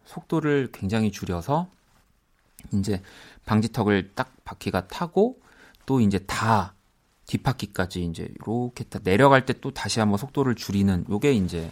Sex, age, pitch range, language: male, 40-59, 95-130 Hz, Korean